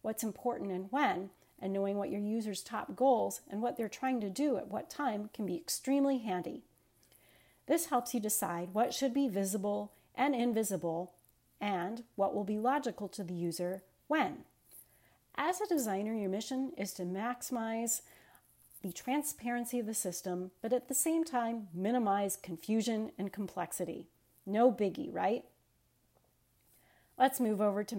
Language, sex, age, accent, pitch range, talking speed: English, female, 40-59, American, 195-245 Hz, 155 wpm